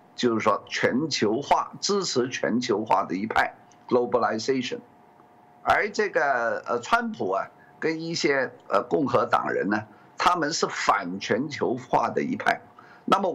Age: 50-69